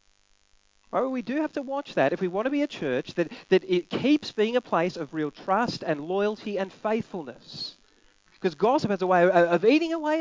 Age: 40-59